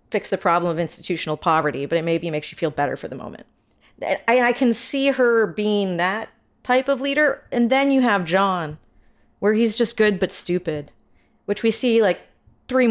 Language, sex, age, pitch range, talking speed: English, female, 40-59, 175-235 Hz, 195 wpm